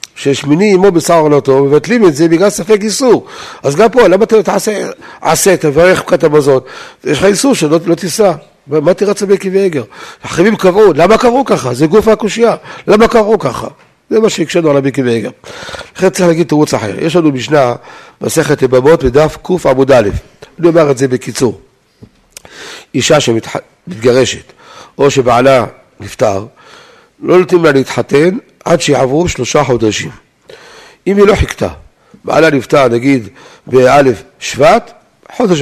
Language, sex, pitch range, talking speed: Hebrew, male, 140-205 Hz, 155 wpm